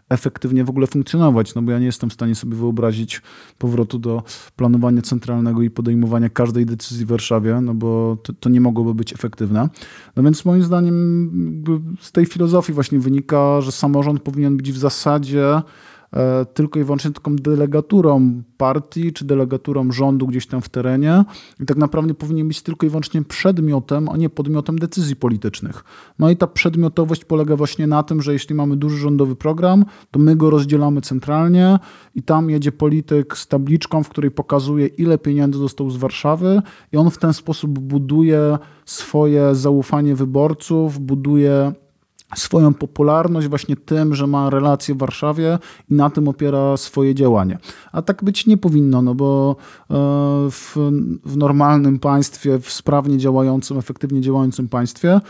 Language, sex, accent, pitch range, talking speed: Polish, male, native, 135-155 Hz, 160 wpm